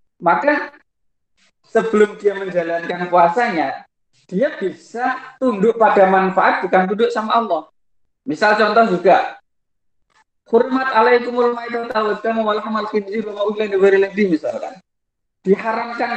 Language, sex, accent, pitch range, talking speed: Indonesian, male, native, 190-240 Hz, 70 wpm